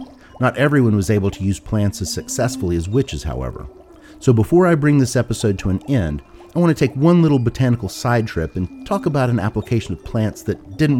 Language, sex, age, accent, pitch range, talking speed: English, male, 40-59, American, 85-125 Hz, 205 wpm